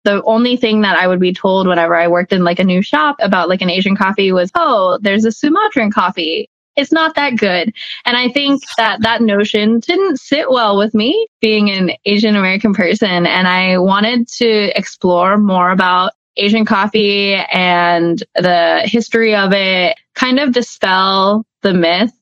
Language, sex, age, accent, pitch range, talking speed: English, female, 20-39, American, 180-230 Hz, 180 wpm